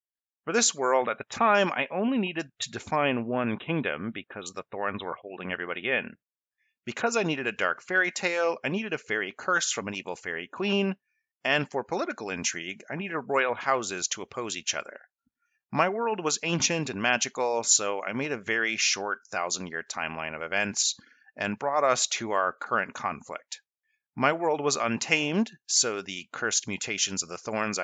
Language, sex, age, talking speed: English, male, 30-49, 180 wpm